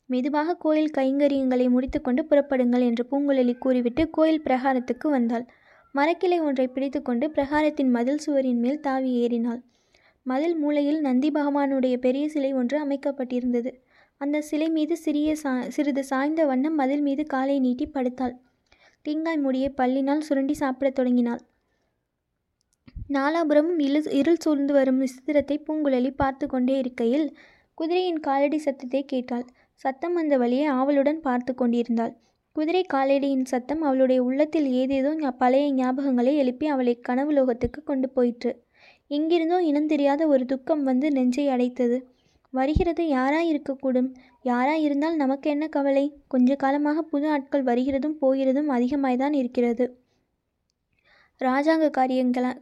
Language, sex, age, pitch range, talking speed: Tamil, female, 20-39, 255-295 Hz, 120 wpm